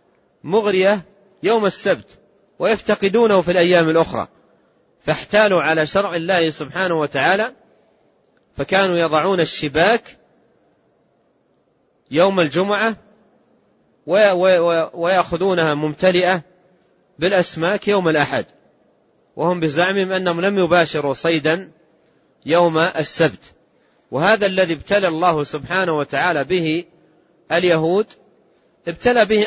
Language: Arabic